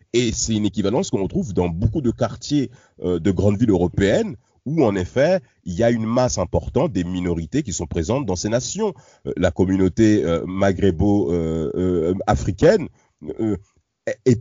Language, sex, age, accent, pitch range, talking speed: French, male, 40-59, French, 95-120 Hz, 175 wpm